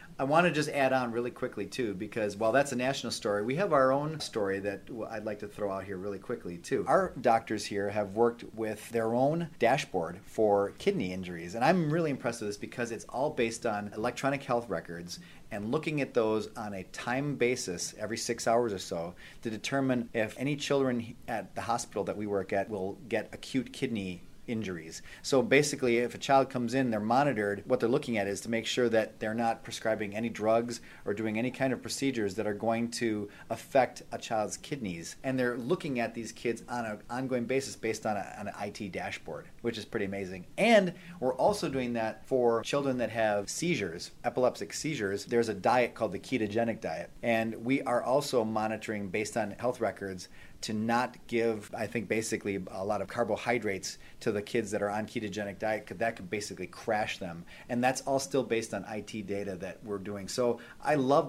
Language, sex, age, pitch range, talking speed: English, male, 30-49, 105-125 Hz, 205 wpm